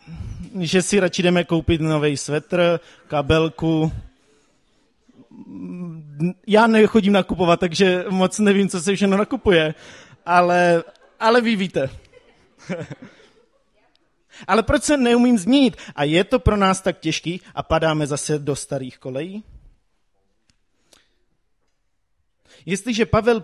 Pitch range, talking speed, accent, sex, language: 135-195 Hz, 110 wpm, native, male, Czech